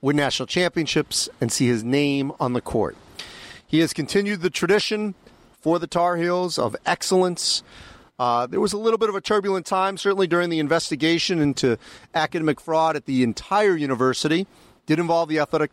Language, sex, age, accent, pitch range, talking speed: English, male, 40-59, American, 130-170 Hz, 175 wpm